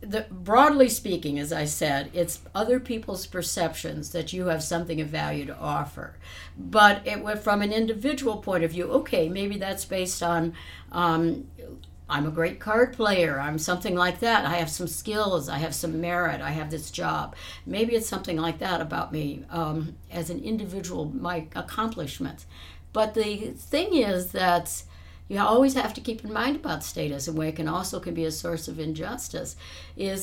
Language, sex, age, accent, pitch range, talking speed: English, female, 60-79, American, 155-215 Hz, 185 wpm